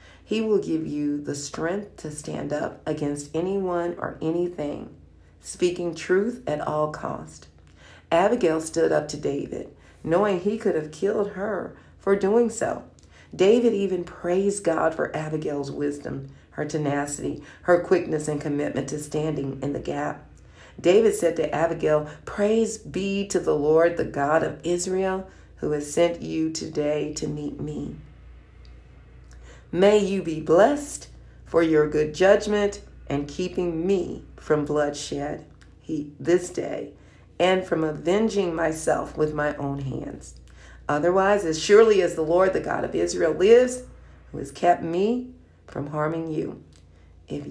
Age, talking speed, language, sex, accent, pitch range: 50-69, 145 wpm, English, female, American, 145-185 Hz